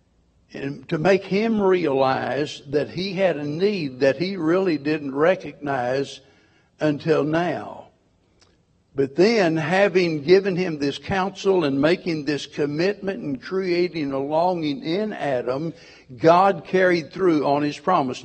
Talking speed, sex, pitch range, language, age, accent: 130 wpm, male, 145-185 Hz, English, 60-79, American